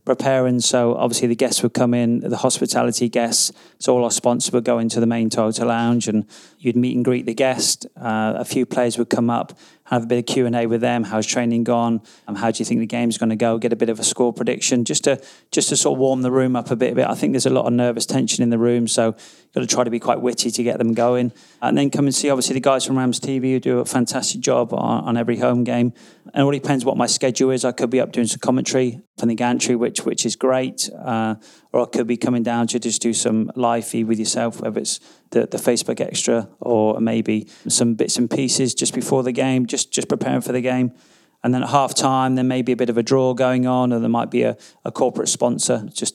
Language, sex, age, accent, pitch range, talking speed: English, male, 30-49, British, 115-125 Hz, 265 wpm